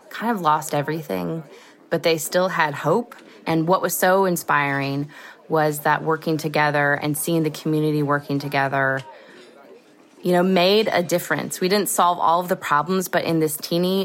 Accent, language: American, English